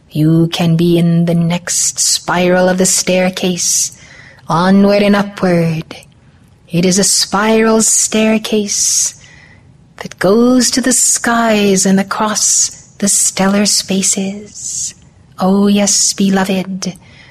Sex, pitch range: female, 175-215 Hz